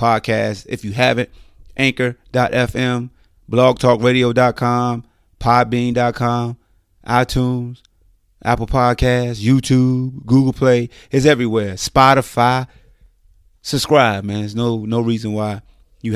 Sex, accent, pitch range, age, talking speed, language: male, American, 105-125 Hz, 30-49, 90 wpm, English